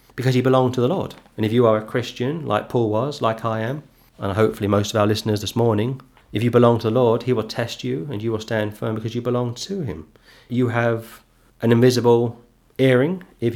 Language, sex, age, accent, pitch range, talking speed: English, male, 40-59, British, 110-125 Hz, 230 wpm